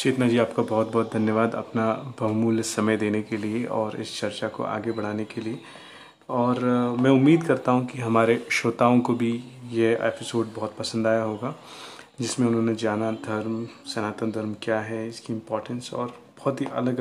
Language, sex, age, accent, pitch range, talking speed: Hindi, male, 30-49, native, 115-125 Hz, 175 wpm